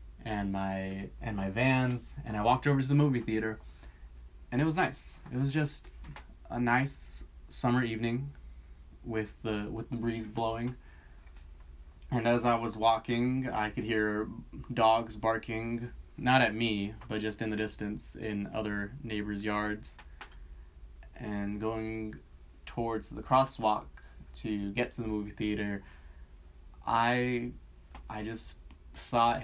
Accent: American